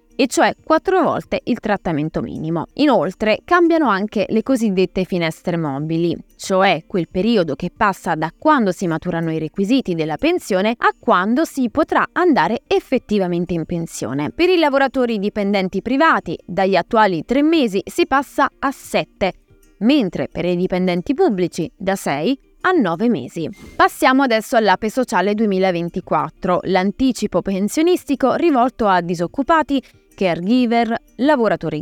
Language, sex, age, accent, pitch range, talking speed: Italian, female, 20-39, native, 180-270 Hz, 130 wpm